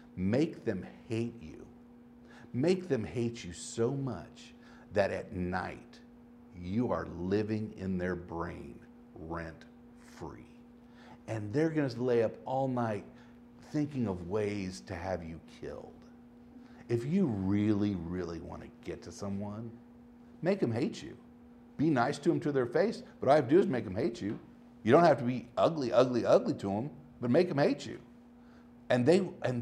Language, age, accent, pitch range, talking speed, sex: English, 50-69, American, 95-135 Hz, 170 wpm, male